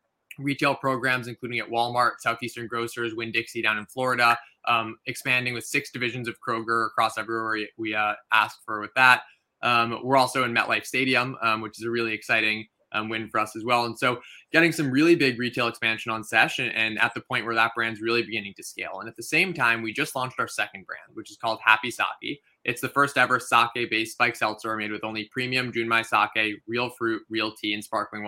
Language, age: English, 20-39